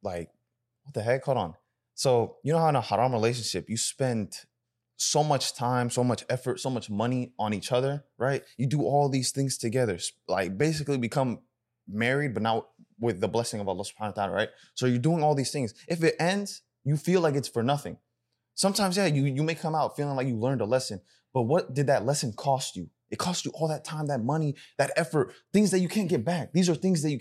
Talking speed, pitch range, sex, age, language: 235 wpm, 120-155 Hz, male, 20-39, English